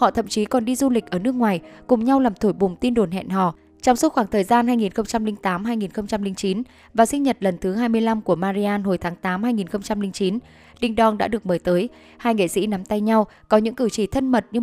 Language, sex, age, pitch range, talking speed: Vietnamese, female, 10-29, 195-235 Hz, 225 wpm